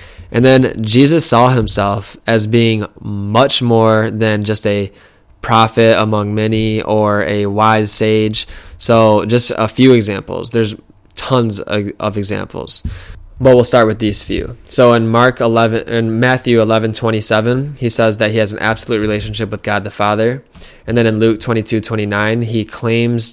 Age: 20-39